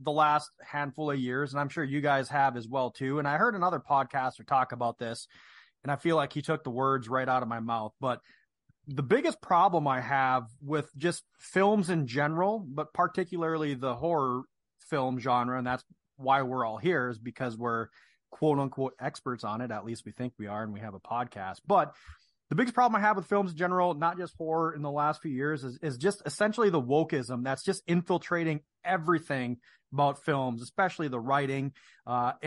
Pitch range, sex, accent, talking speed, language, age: 130-165 Hz, male, American, 205 wpm, English, 30-49